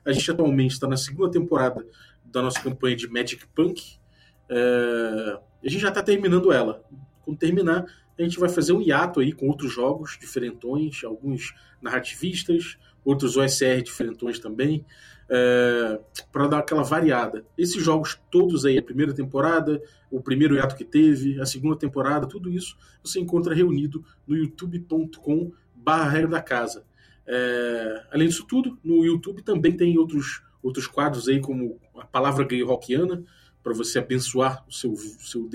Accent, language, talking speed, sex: Brazilian, Portuguese, 155 wpm, male